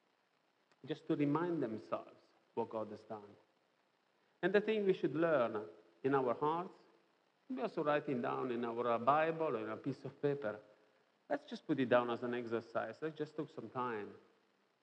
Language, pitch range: English, 120-170 Hz